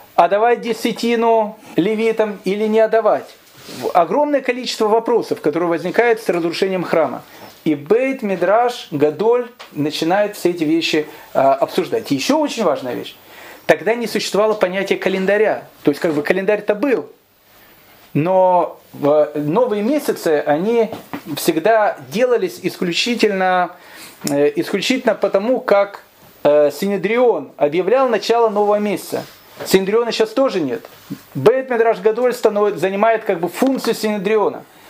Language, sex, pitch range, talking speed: Russian, male, 170-230 Hz, 110 wpm